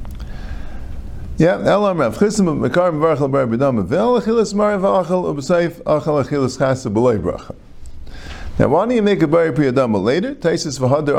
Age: 50-69